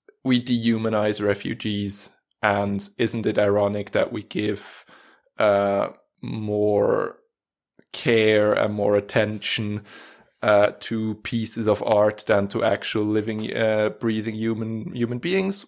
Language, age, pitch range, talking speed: English, 20-39, 105-120 Hz, 115 wpm